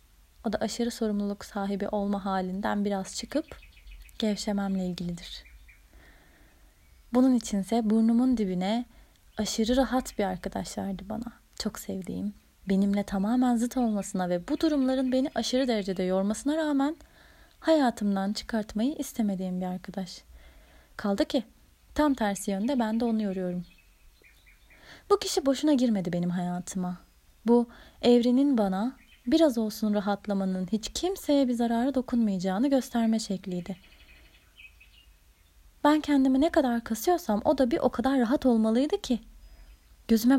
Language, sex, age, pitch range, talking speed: Turkish, female, 30-49, 185-245 Hz, 120 wpm